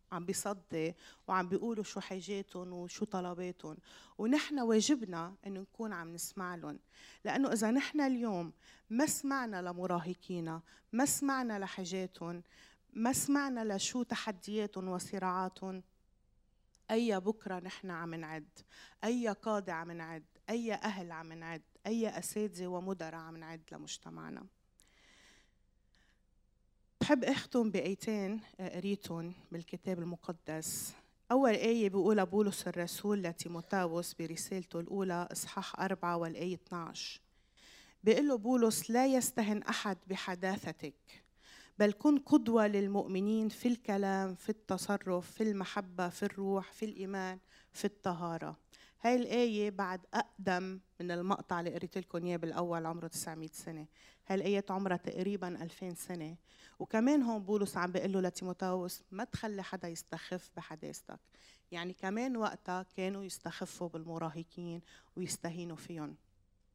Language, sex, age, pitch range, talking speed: Arabic, female, 30-49, 170-210 Hz, 115 wpm